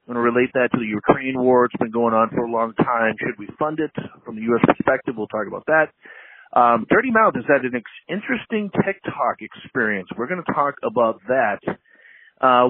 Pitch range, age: 120-155 Hz, 40-59